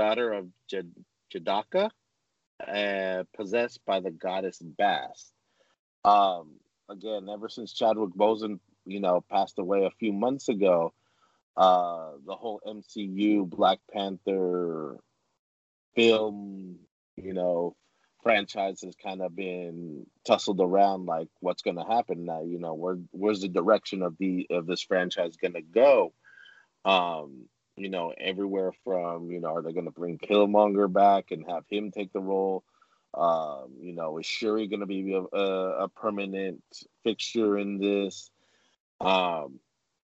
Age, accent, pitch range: 30-49, American, 90-105 Hz